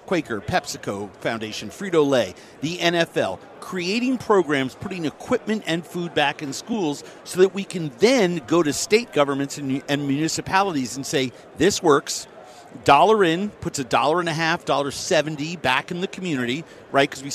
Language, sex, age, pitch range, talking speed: English, male, 50-69, 135-185 Hz, 170 wpm